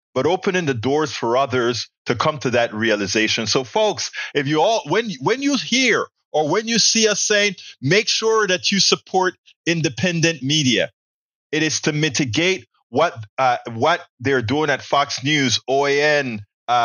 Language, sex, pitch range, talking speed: English, male, 130-195 Hz, 165 wpm